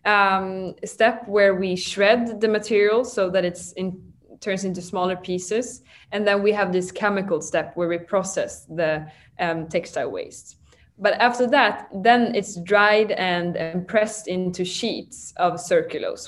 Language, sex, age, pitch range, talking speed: English, female, 20-39, 175-205 Hz, 155 wpm